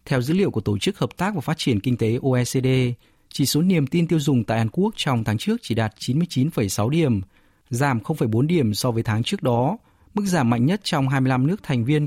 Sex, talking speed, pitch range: male, 235 wpm, 120-160 Hz